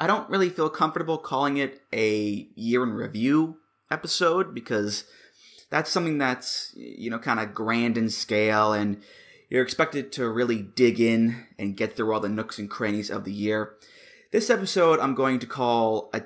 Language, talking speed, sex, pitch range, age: English, 175 wpm, male, 110-140 Hz, 20-39